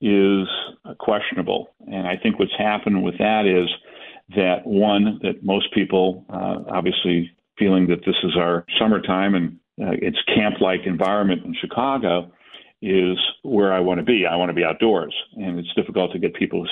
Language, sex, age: English, male, 50-69